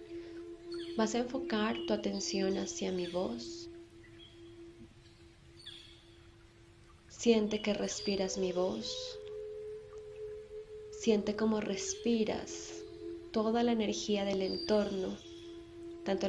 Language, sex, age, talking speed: Spanish, female, 20-39, 80 wpm